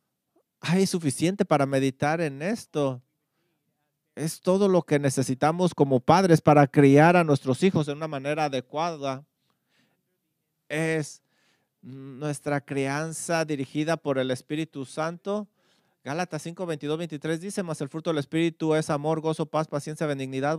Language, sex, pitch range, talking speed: English, male, 140-165 Hz, 135 wpm